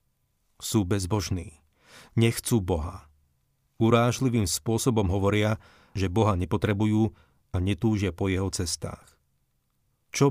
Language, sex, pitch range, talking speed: Slovak, male, 90-110 Hz, 95 wpm